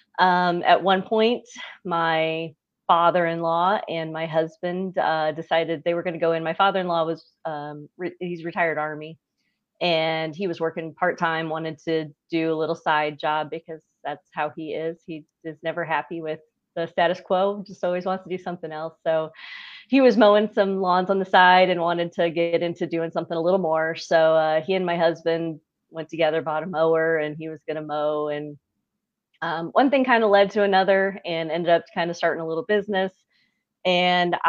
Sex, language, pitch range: female, English, 155-180 Hz